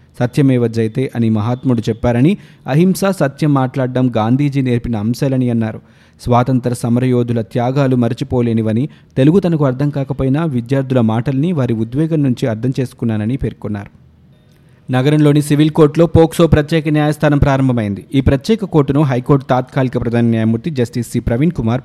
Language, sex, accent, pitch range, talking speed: Telugu, male, native, 120-145 Hz, 125 wpm